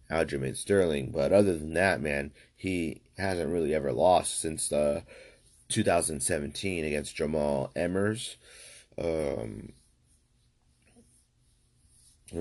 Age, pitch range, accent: 30-49, 75-90 Hz, American